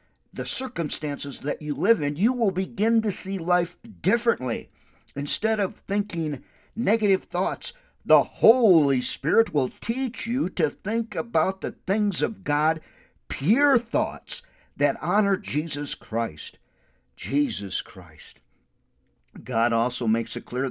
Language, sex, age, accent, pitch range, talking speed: English, male, 50-69, American, 135-190 Hz, 130 wpm